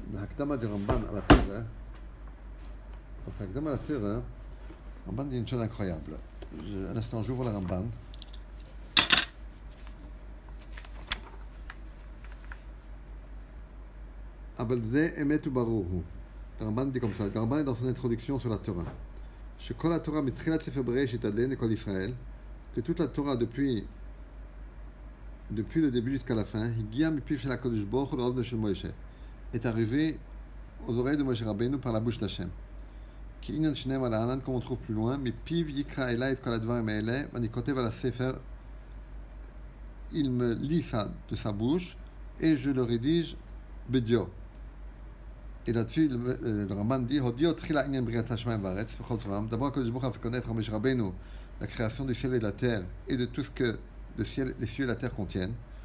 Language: English